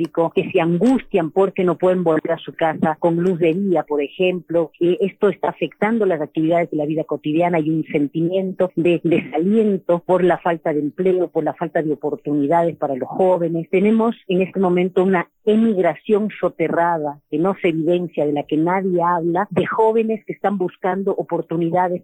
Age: 40-59